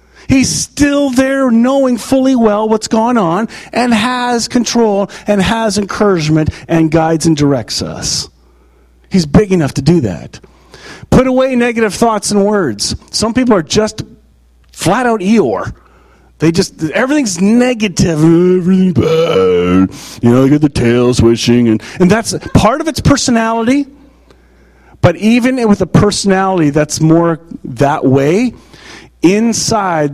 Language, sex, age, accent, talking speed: English, male, 40-59, American, 135 wpm